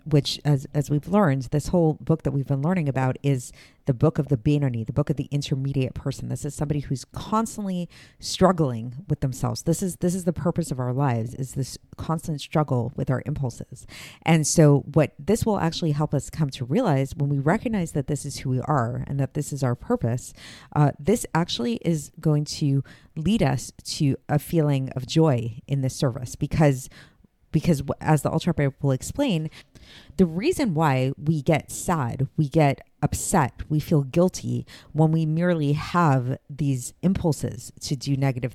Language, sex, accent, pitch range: English, female, American, 135-160 Hz